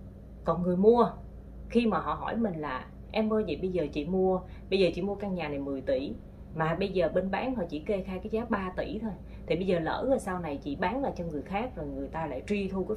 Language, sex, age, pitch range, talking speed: Vietnamese, female, 20-39, 165-220 Hz, 275 wpm